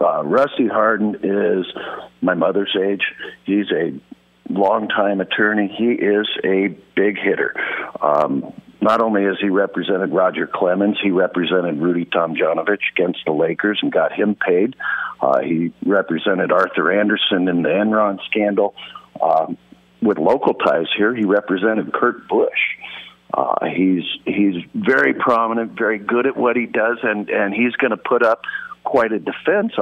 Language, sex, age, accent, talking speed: English, male, 50-69, American, 150 wpm